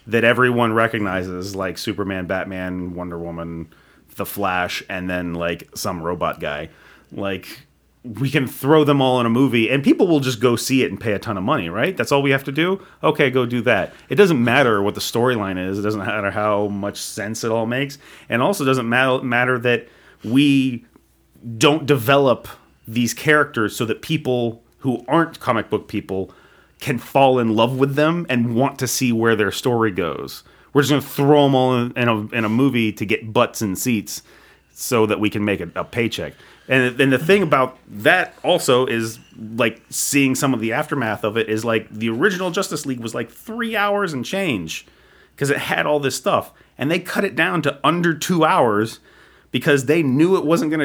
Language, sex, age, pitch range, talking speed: English, male, 30-49, 105-140 Hz, 205 wpm